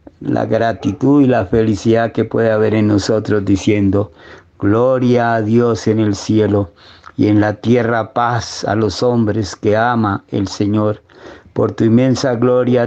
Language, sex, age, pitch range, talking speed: Spanish, male, 50-69, 110-130 Hz, 155 wpm